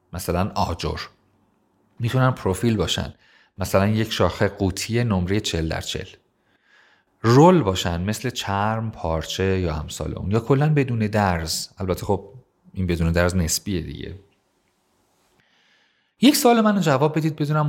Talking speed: 130 wpm